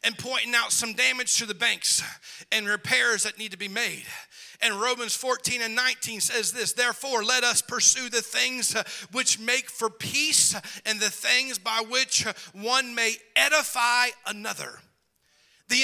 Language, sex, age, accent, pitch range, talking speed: English, male, 40-59, American, 220-275 Hz, 160 wpm